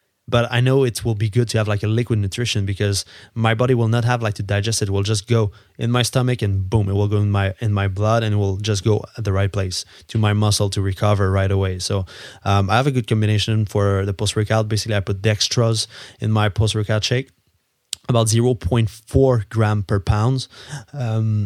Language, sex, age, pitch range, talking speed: English, male, 20-39, 100-115 Hz, 225 wpm